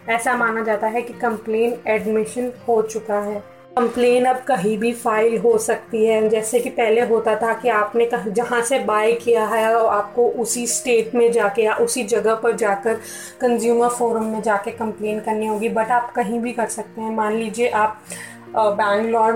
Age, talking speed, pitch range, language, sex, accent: 30-49, 185 wpm, 215-245 Hz, Hindi, female, native